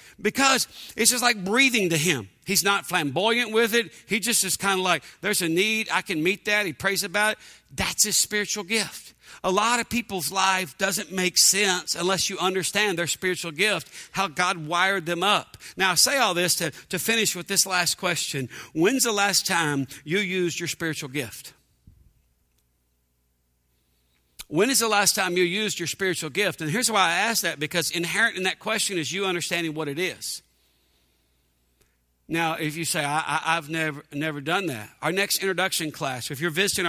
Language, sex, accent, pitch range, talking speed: English, male, American, 155-185 Hz, 190 wpm